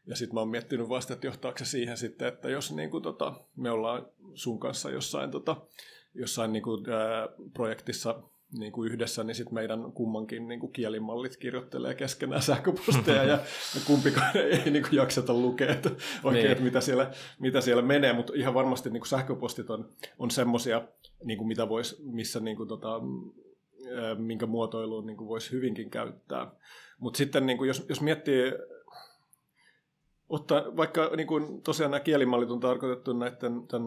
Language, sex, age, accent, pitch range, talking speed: Finnish, male, 30-49, native, 115-130 Hz, 120 wpm